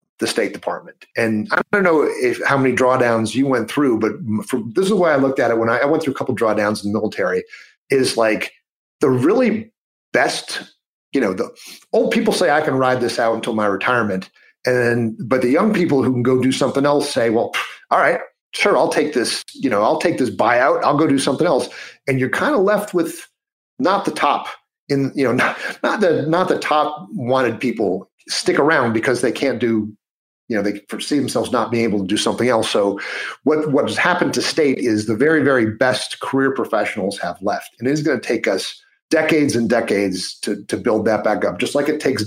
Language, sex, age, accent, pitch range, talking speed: English, male, 40-59, American, 115-145 Hz, 225 wpm